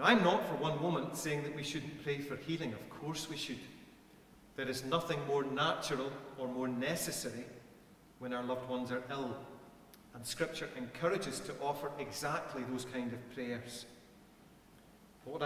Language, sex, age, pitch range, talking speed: English, male, 40-59, 130-160 Hz, 160 wpm